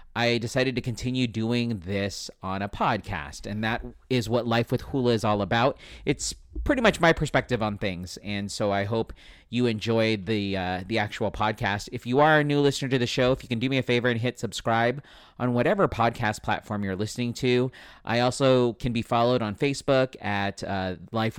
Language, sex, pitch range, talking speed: English, male, 105-130 Hz, 205 wpm